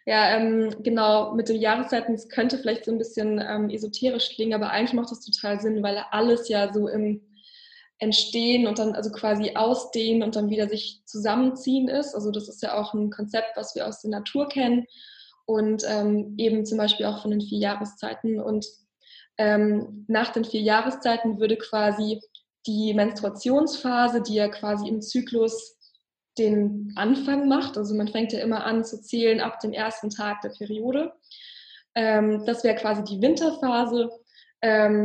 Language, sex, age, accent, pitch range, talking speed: German, female, 20-39, German, 210-235 Hz, 170 wpm